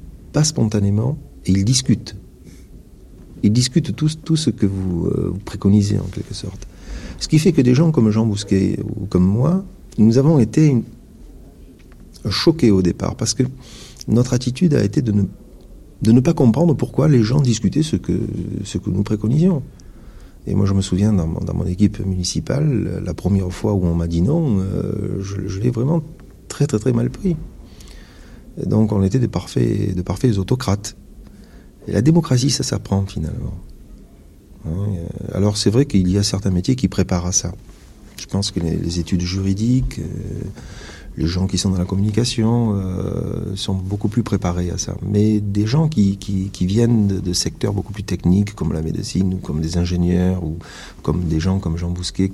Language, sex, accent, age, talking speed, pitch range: French, male, French, 40-59, 180 wpm, 90-120 Hz